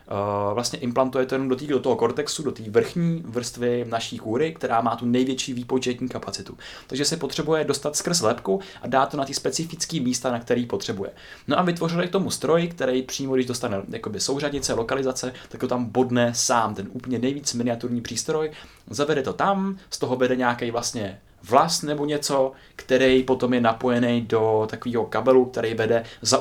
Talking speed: 180 wpm